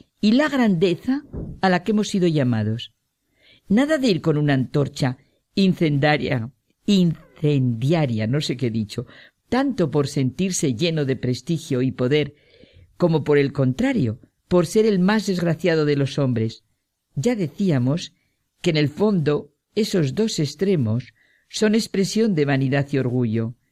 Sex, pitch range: female, 130-185 Hz